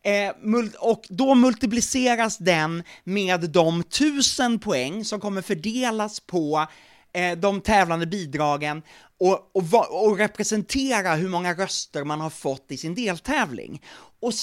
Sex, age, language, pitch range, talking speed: male, 30-49, English, 170-235 Hz, 110 wpm